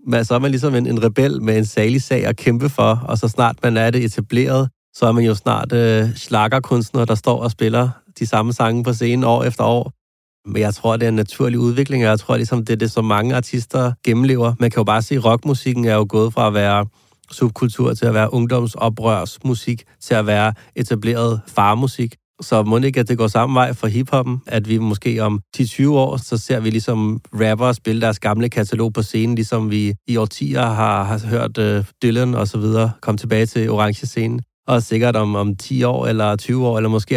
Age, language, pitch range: 30-49, Danish, 110-125 Hz